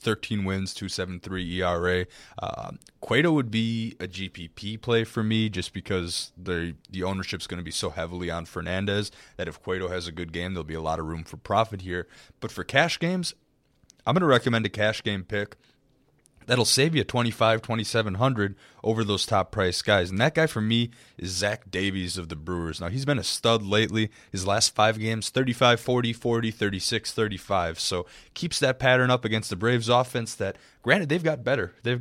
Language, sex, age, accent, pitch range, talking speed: English, male, 20-39, American, 95-125 Hz, 190 wpm